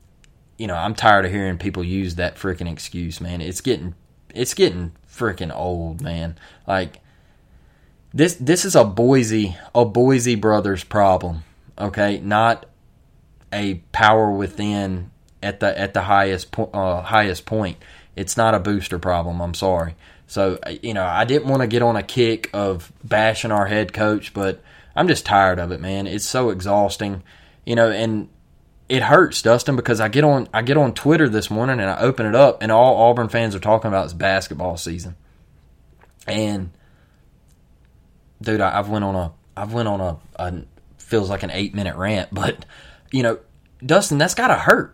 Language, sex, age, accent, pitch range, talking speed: English, male, 20-39, American, 90-120 Hz, 175 wpm